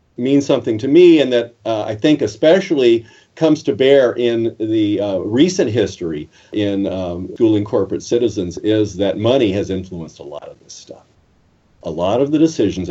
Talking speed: 175 wpm